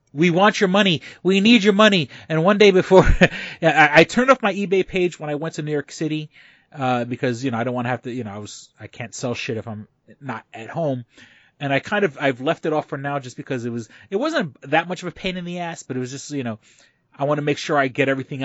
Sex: male